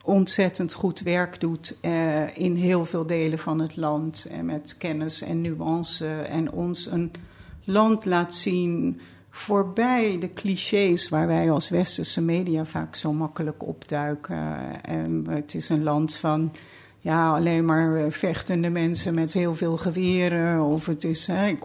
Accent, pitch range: Dutch, 155-175 Hz